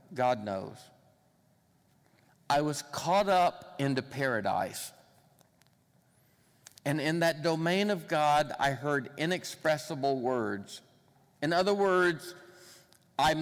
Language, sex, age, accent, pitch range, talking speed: English, male, 50-69, American, 145-180 Hz, 100 wpm